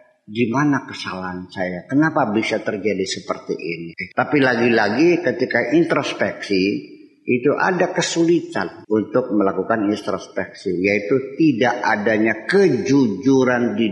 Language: Indonesian